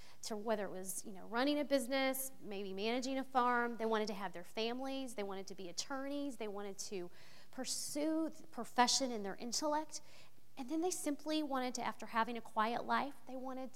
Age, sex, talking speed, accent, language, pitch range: 30-49, female, 200 wpm, American, English, 205-265 Hz